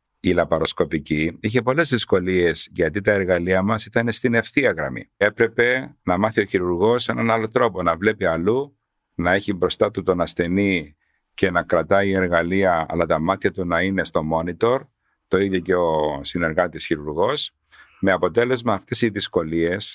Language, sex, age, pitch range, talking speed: Greek, male, 50-69, 85-115 Hz, 160 wpm